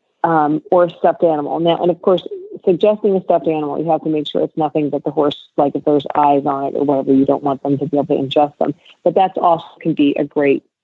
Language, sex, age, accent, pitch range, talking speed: English, female, 40-59, American, 150-175 Hz, 260 wpm